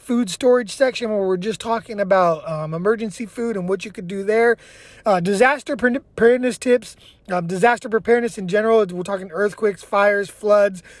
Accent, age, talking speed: American, 20-39, 170 wpm